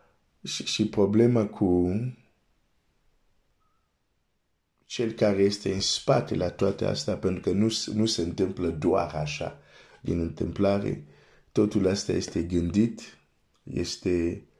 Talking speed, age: 115 wpm, 50-69